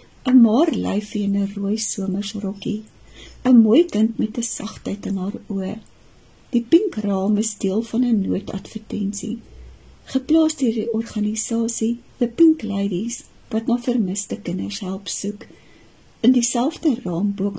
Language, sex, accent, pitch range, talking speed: Dutch, female, Swiss, 205-245 Hz, 135 wpm